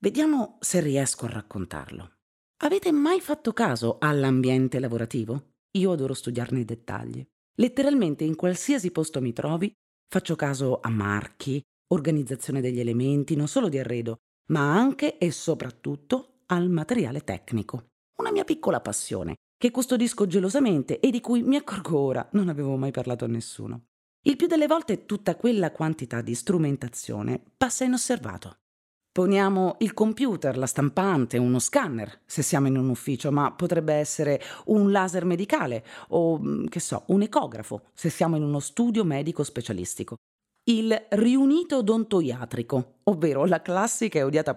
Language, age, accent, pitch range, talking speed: Italian, 40-59, native, 130-210 Hz, 145 wpm